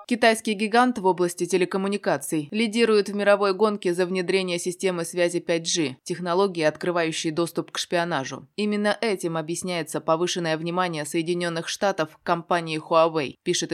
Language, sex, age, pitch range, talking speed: Russian, female, 20-39, 165-200 Hz, 130 wpm